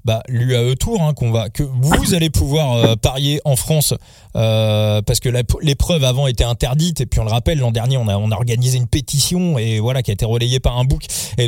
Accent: French